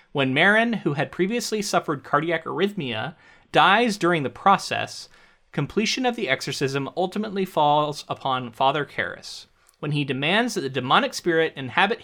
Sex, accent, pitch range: male, American, 130-185 Hz